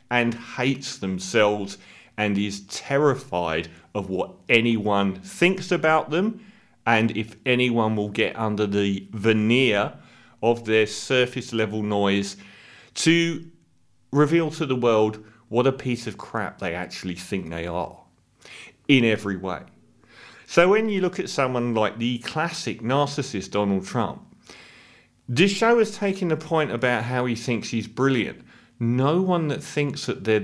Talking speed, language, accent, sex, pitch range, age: 145 wpm, English, British, male, 105-145 Hz, 40-59